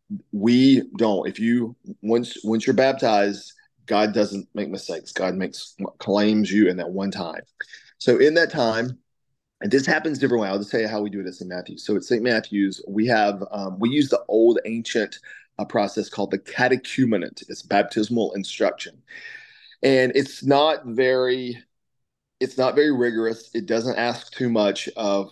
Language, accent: English, American